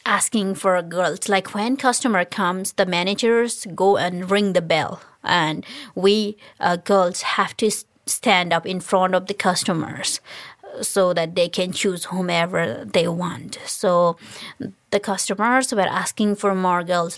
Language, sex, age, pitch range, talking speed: English, female, 20-39, 180-215 Hz, 150 wpm